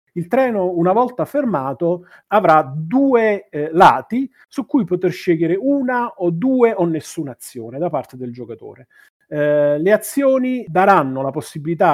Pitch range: 145-215 Hz